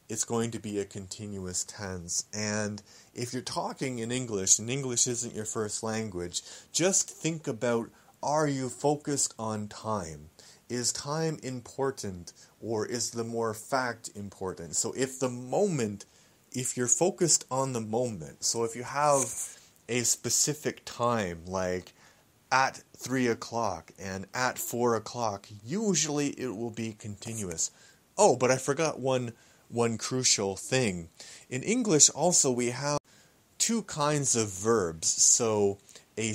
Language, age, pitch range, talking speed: English, 30-49, 105-130 Hz, 140 wpm